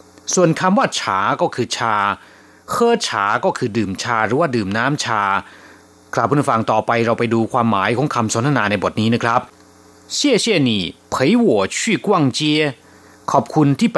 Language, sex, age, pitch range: Thai, male, 30-49, 115-155 Hz